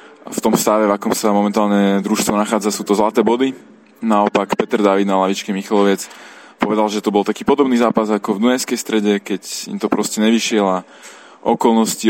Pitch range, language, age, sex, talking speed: 100-115 Hz, Slovak, 20-39, male, 185 wpm